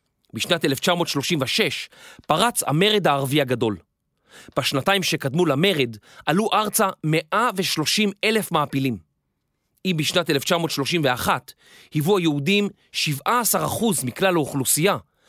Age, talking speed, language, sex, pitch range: 30-49, 80 wpm, Hebrew, male, 140-210 Hz